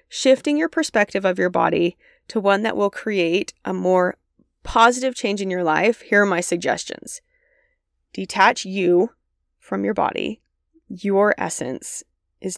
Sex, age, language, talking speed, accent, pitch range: female, 20-39, English, 145 wpm, American, 185-255 Hz